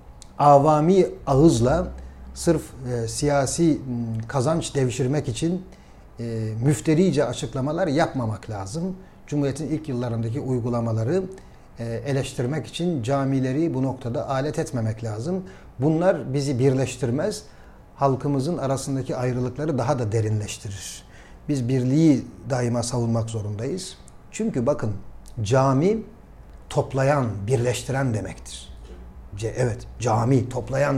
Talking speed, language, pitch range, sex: 95 wpm, Turkish, 115-155 Hz, male